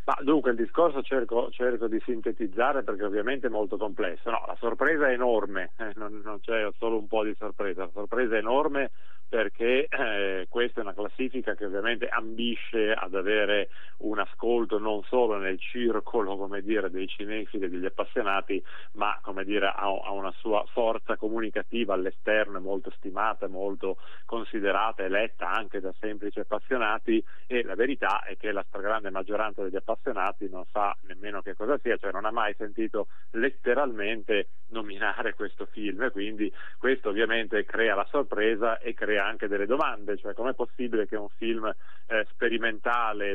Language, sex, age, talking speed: Italian, male, 40-59, 165 wpm